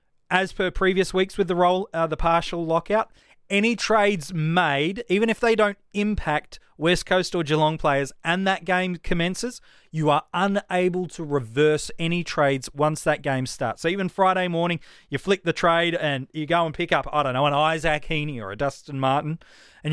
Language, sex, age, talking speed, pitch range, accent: English, male, 30-49, 195 wpm, 145-185 Hz, Australian